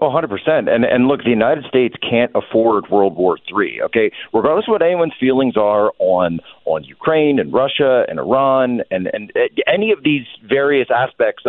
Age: 40-59